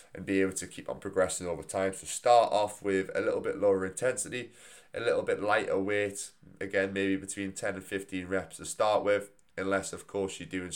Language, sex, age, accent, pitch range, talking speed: English, male, 20-39, British, 90-105 Hz, 210 wpm